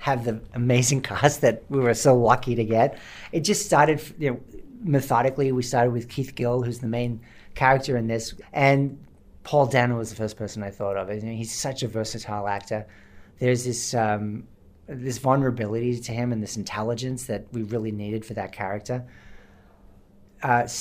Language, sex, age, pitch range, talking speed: English, male, 40-59, 110-135 Hz, 180 wpm